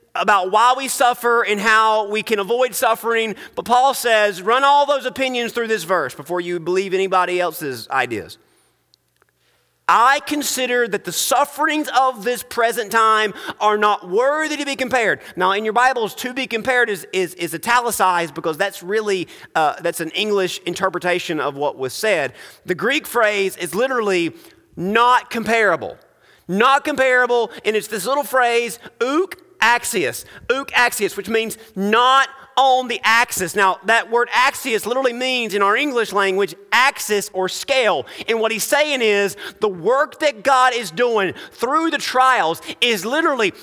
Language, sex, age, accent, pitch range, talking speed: English, male, 30-49, American, 200-265 Hz, 160 wpm